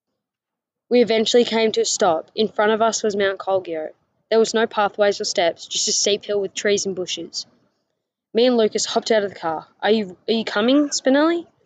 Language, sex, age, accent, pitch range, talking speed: English, female, 10-29, Australian, 180-220 Hz, 205 wpm